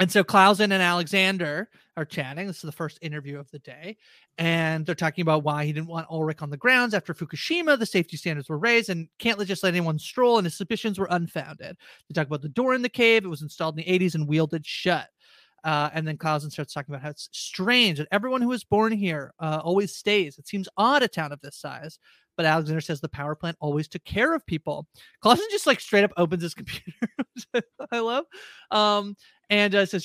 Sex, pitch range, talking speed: male, 155-205 Hz, 225 wpm